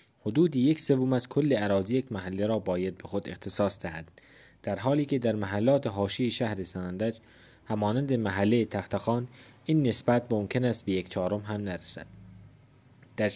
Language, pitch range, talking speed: Persian, 100-130 Hz, 155 wpm